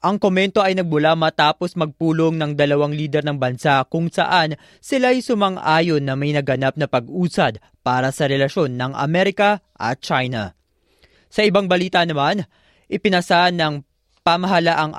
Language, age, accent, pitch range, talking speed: Filipino, 20-39, native, 145-180 Hz, 135 wpm